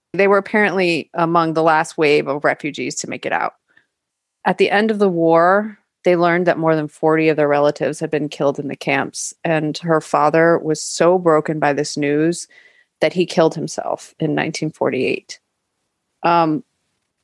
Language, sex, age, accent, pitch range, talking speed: English, female, 30-49, American, 155-200 Hz, 170 wpm